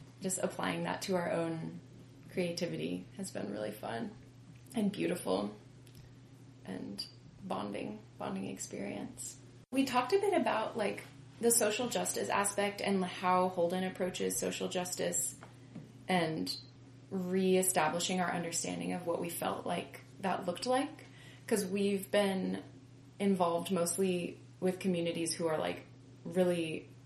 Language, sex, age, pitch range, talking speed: English, female, 20-39, 130-185 Hz, 125 wpm